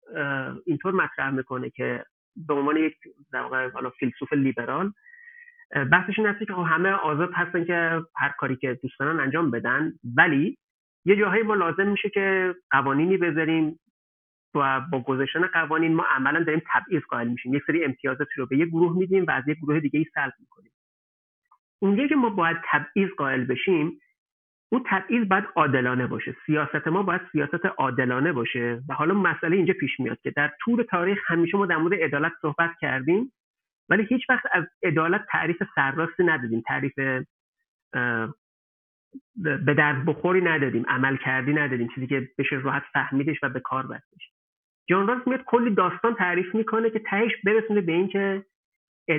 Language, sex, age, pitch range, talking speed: Persian, male, 40-59, 140-195 Hz, 155 wpm